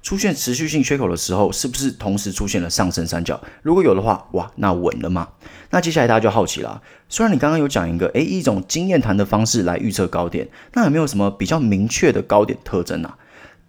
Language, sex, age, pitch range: Chinese, male, 30-49, 90-125 Hz